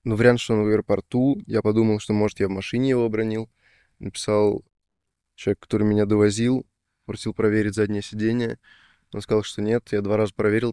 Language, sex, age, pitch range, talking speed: Russian, male, 20-39, 100-115 Hz, 180 wpm